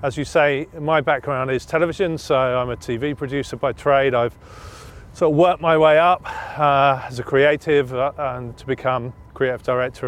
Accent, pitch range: British, 130-155 Hz